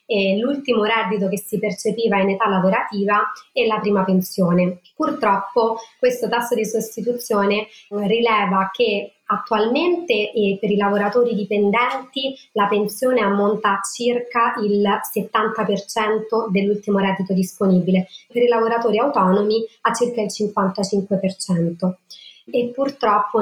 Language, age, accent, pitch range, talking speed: Italian, 30-49, native, 195-230 Hz, 115 wpm